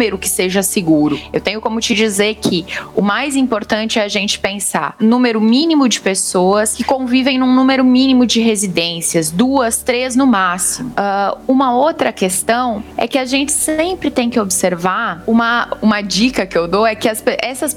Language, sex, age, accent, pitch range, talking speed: Portuguese, female, 10-29, Brazilian, 195-255 Hz, 180 wpm